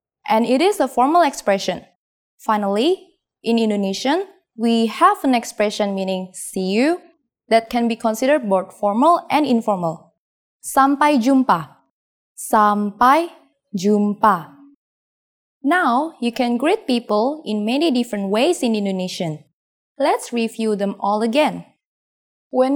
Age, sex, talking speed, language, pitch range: 20-39, female, 120 wpm, English, 215-315 Hz